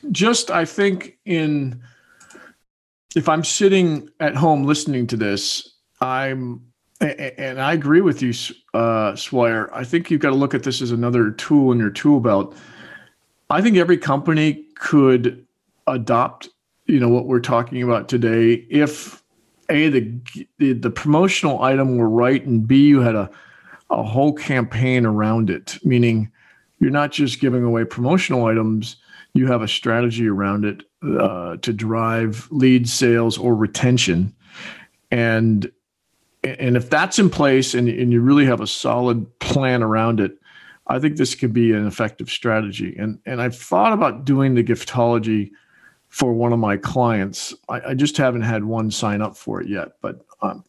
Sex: male